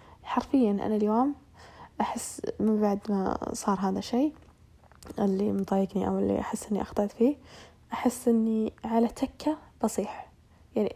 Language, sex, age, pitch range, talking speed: Arabic, female, 10-29, 205-235 Hz, 130 wpm